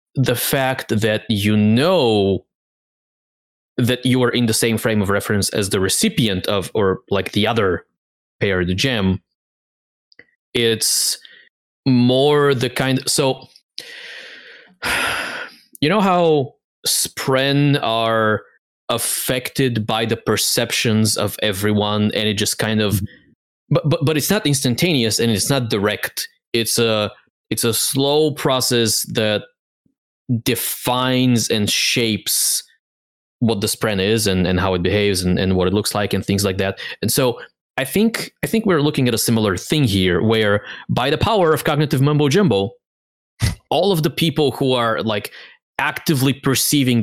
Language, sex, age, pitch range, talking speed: English, male, 20-39, 105-130 Hz, 150 wpm